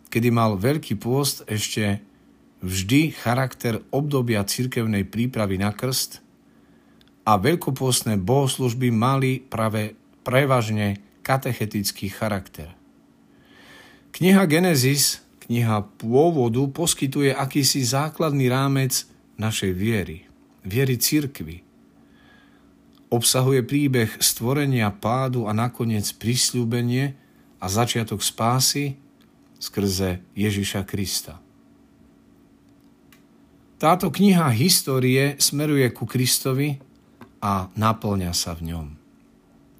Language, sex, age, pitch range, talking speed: Slovak, male, 50-69, 105-135 Hz, 85 wpm